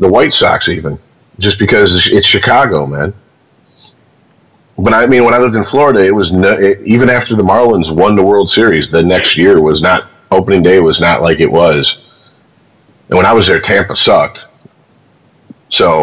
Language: English